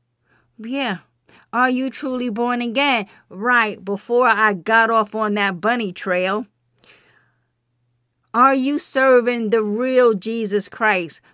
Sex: female